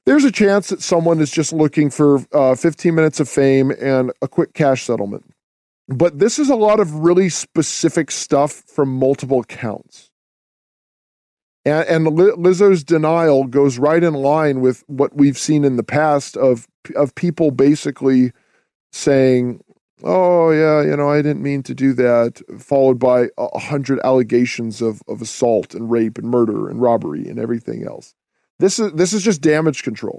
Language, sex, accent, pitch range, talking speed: English, male, American, 135-175 Hz, 170 wpm